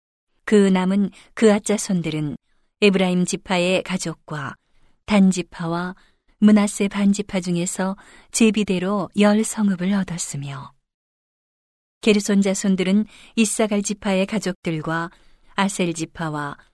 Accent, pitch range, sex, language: native, 170-205 Hz, female, Korean